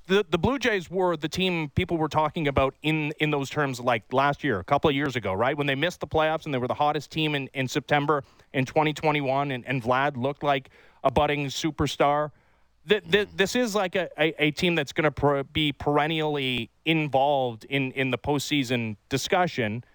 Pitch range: 130-170 Hz